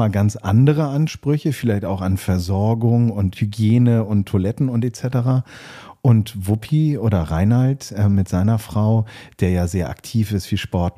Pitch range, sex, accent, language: 95-120 Hz, male, German, German